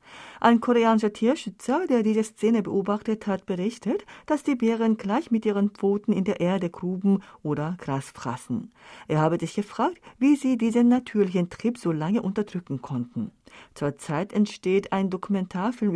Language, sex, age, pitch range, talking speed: German, female, 50-69, 165-235 Hz, 150 wpm